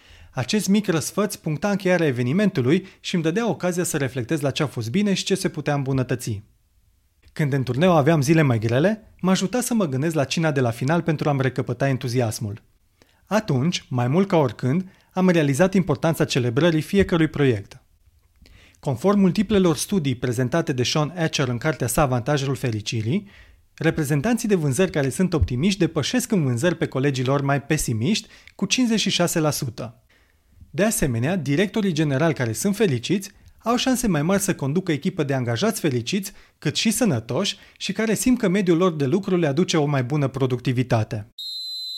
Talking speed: 165 wpm